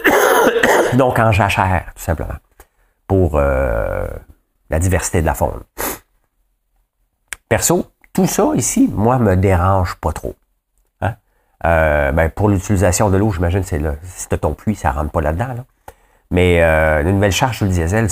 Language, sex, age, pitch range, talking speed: English, male, 50-69, 85-110 Hz, 160 wpm